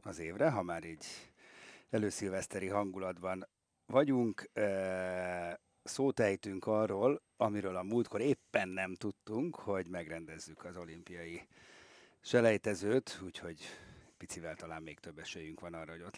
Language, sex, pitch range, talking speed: Hungarian, male, 90-115 Hz, 120 wpm